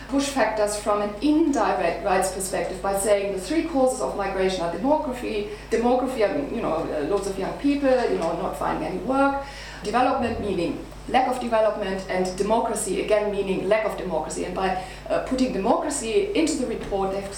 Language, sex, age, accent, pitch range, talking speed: English, female, 30-49, German, 190-255 Hz, 175 wpm